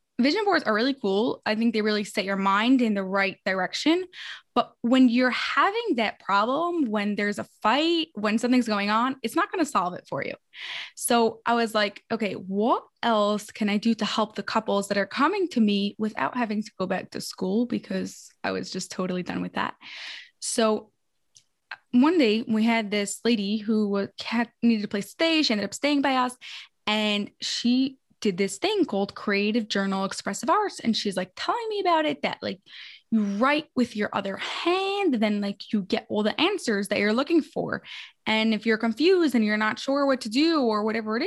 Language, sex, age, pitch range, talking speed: English, female, 10-29, 205-270 Hz, 200 wpm